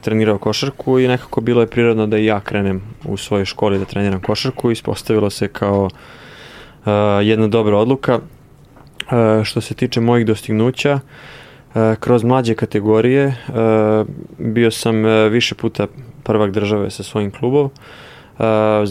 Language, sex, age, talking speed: Russian, male, 20-39, 150 wpm